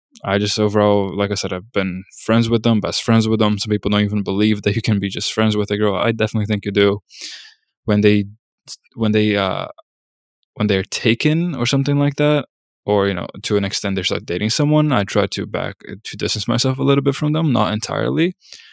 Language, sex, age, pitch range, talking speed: English, male, 20-39, 100-120 Hz, 225 wpm